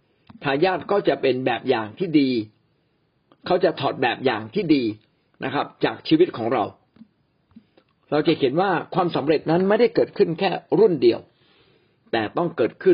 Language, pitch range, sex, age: Thai, 145-190 Hz, male, 60-79